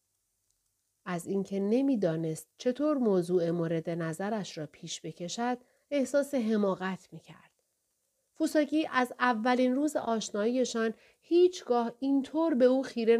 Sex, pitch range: female, 175-275 Hz